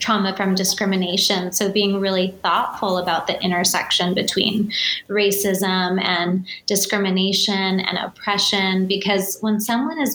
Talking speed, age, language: 120 wpm, 20-39, English